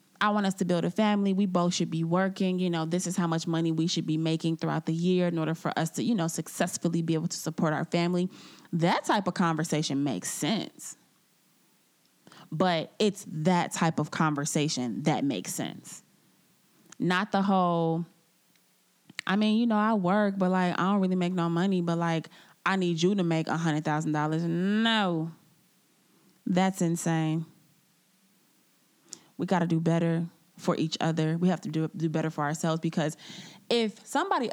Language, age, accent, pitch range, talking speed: English, 20-39, American, 165-205 Hz, 175 wpm